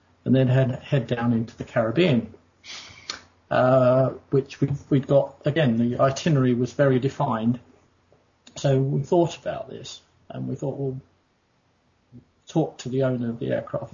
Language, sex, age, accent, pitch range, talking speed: English, male, 40-59, British, 115-140 Hz, 150 wpm